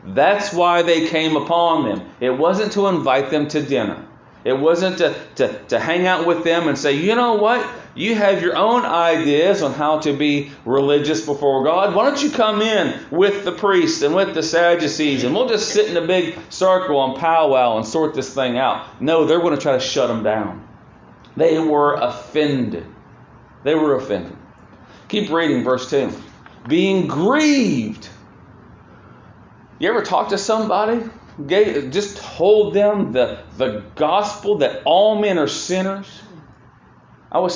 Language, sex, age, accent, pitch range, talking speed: English, male, 40-59, American, 145-210 Hz, 170 wpm